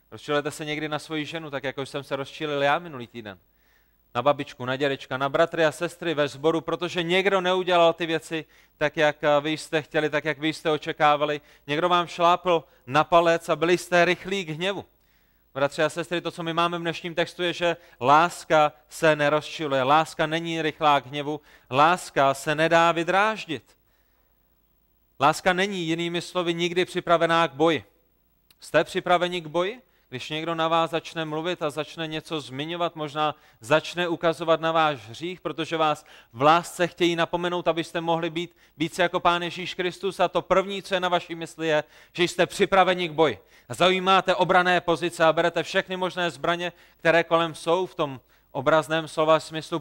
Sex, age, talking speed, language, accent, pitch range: male, 30-49, 175 wpm, Czech, native, 150-175 Hz